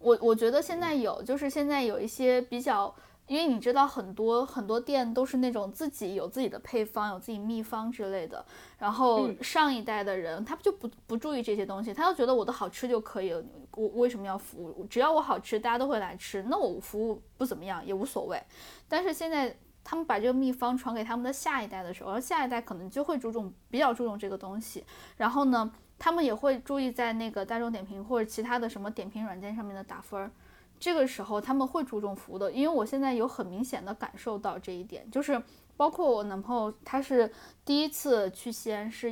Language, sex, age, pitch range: Chinese, female, 10-29, 210-265 Hz